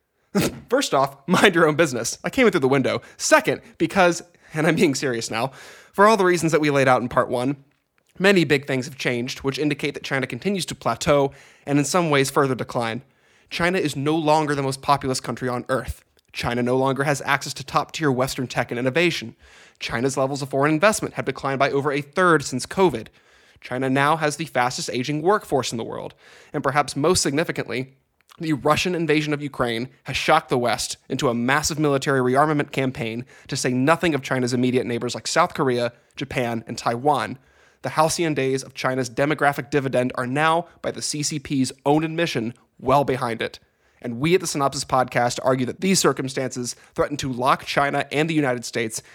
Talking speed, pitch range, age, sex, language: 195 wpm, 125-155 Hz, 20-39, male, English